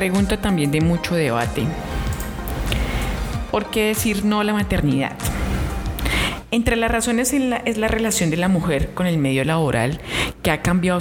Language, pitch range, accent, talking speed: Spanish, 140-175 Hz, Colombian, 165 wpm